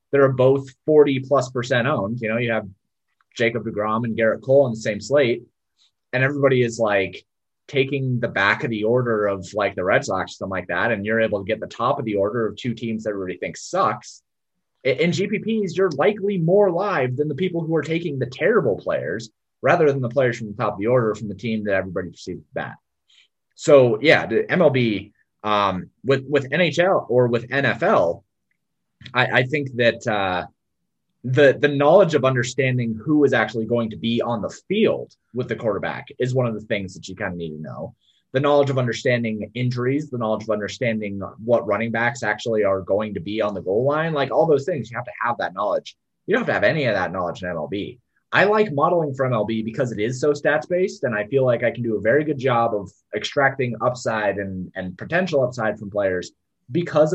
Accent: American